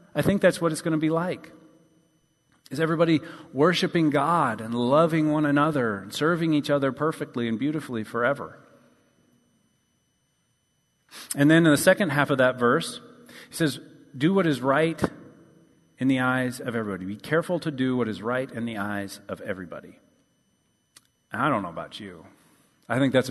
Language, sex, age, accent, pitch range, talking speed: English, male, 40-59, American, 115-145 Hz, 165 wpm